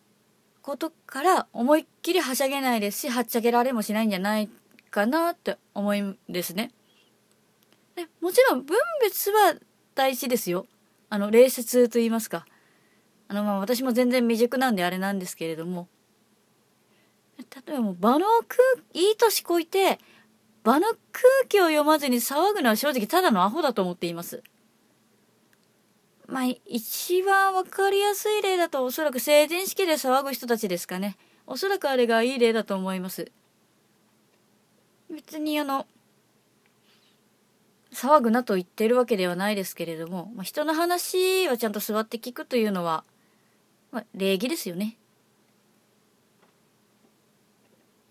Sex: female